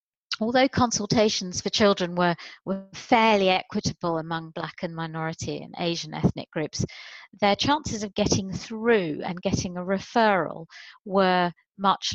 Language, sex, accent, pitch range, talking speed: English, female, British, 165-195 Hz, 135 wpm